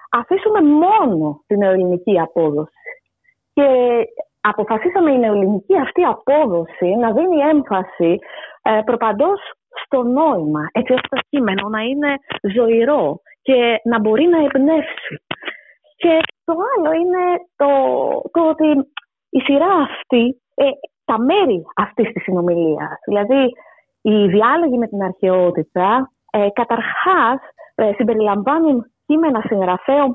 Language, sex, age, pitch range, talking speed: Greek, female, 30-49, 215-310 Hz, 110 wpm